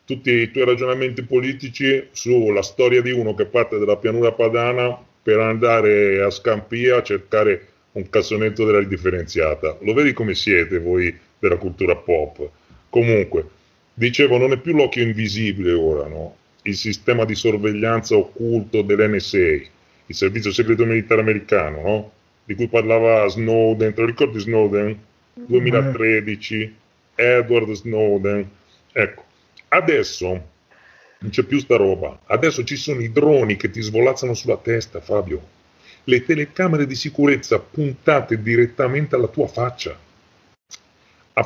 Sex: female